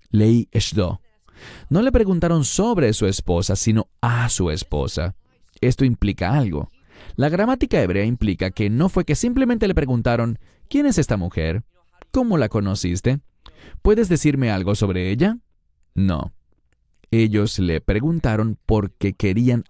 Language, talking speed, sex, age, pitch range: English, 135 wpm, male, 30-49, 100-170 Hz